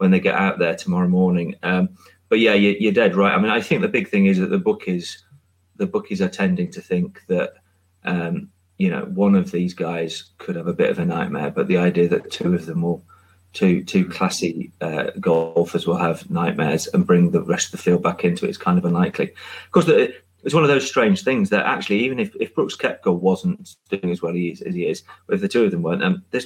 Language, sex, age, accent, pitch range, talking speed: English, male, 30-49, British, 90-140 Hz, 250 wpm